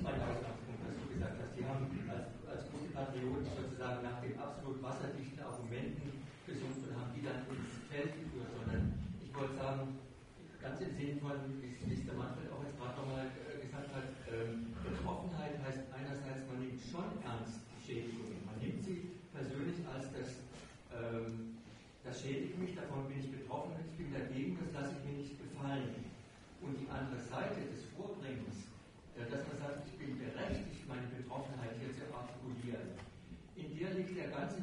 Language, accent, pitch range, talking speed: German, German, 125-145 Hz, 170 wpm